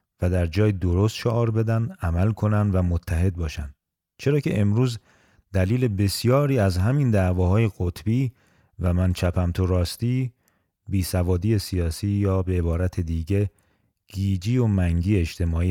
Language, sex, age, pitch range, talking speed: Persian, male, 30-49, 90-110 Hz, 135 wpm